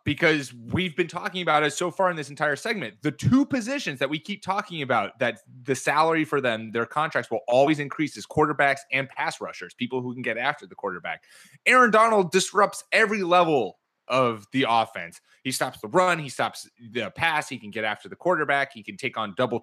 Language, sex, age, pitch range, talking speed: English, male, 20-39, 120-180 Hz, 210 wpm